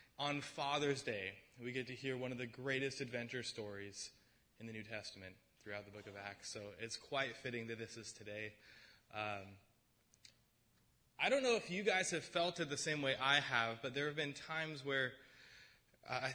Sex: male